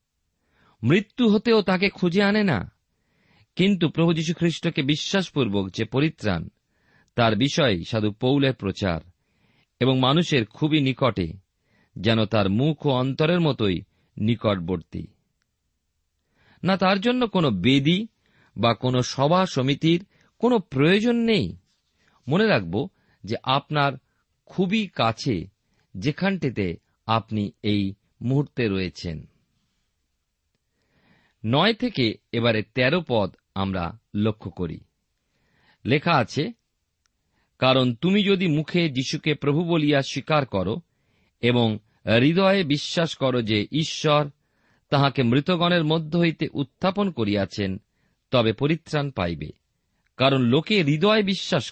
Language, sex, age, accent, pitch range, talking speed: Bengali, male, 50-69, native, 105-165 Hz, 105 wpm